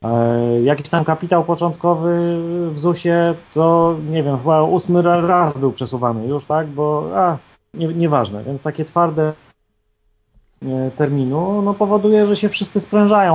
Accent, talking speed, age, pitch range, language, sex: native, 135 wpm, 30-49, 125-160 Hz, Polish, male